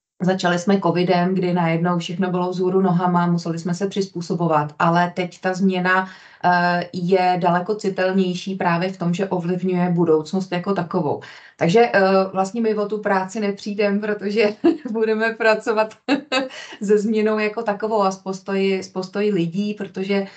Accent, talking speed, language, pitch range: native, 135 wpm, Czech, 180-205 Hz